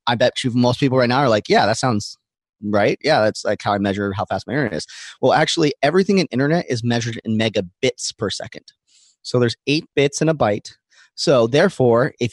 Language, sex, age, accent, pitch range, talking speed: English, male, 30-49, American, 120-145 Hz, 220 wpm